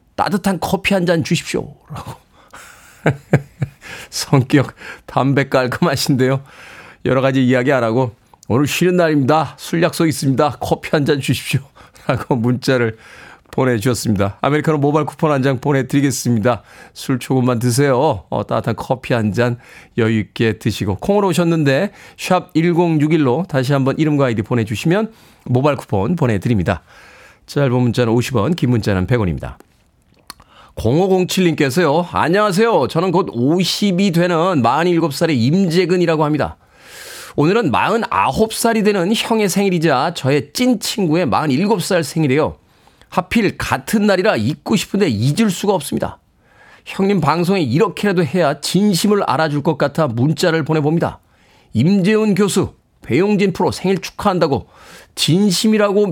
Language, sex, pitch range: Korean, male, 130-185 Hz